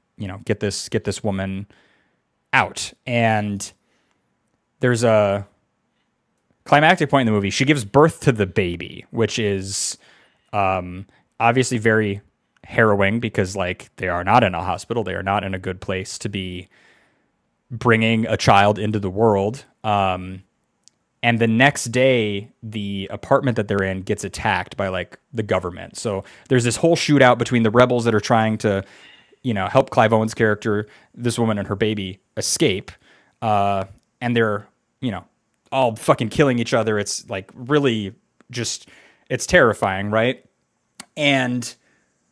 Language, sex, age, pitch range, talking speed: English, male, 20-39, 100-120 Hz, 155 wpm